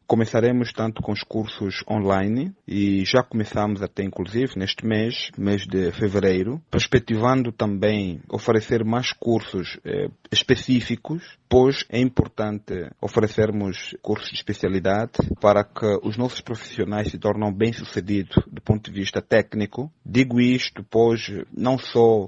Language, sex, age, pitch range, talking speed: Portuguese, male, 30-49, 105-125 Hz, 130 wpm